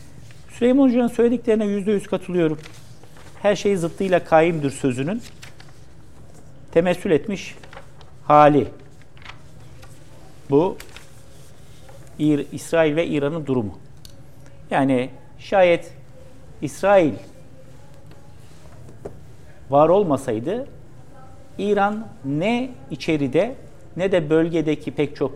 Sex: male